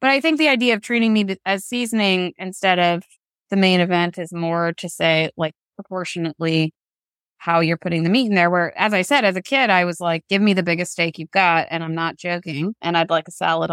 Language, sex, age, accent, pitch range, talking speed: English, female, 20-39, American, 170-205 Hz, 235 wpm